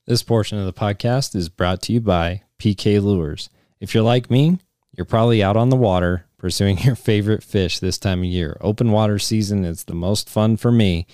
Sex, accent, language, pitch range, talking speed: male, American, English, 95-115 Hz, 210 wpm